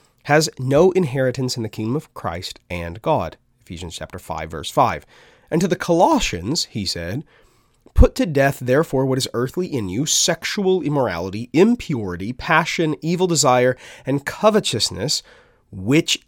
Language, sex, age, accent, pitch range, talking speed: English, male, 30-49, American, 115-170 Hz, 145 wpm